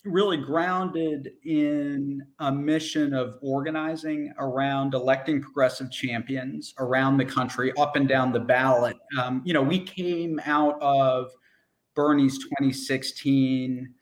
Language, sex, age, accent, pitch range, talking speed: English, male, 40-59, American, 130-150 Hz, 120 wpm